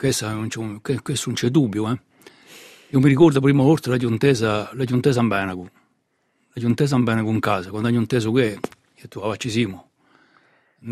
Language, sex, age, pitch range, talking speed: French, male, 60-79, 115-140 Hz, 175 wpm